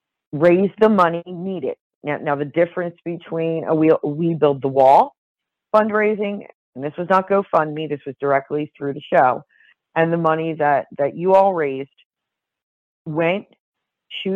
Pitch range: 145-180 Hz